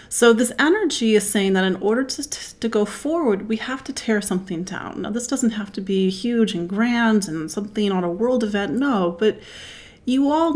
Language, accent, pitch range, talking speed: English, American, 185-230 Hz, 210 wpm